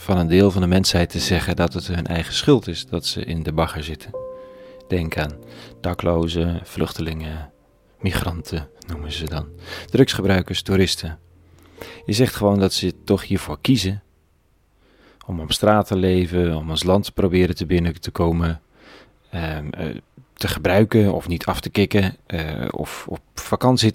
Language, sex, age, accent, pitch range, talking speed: Dutch, male, 40-59, Dutch, 85-100 Hz, 160 wpm